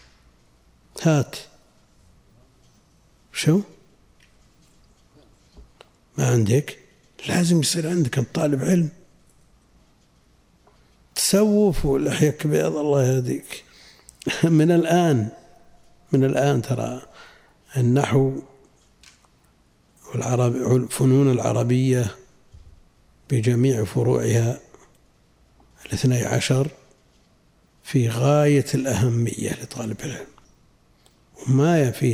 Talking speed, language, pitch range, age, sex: 65 wpm, Arabic, 105-140 Hz, 60-79, male